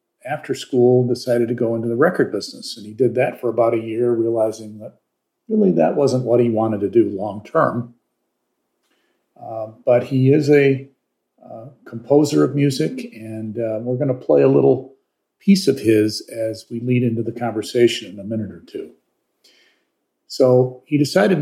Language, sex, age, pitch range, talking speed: English, male, 50-69, 115-135 Hz, 175 wpm